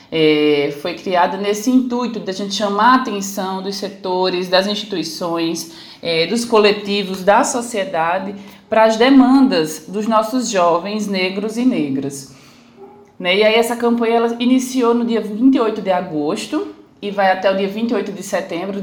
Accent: Brazilian